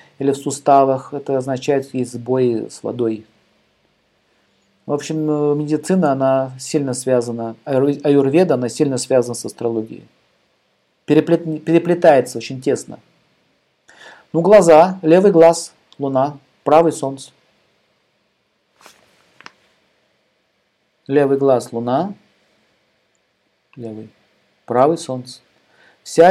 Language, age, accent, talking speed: Russian, 50-69, native, 85 wpm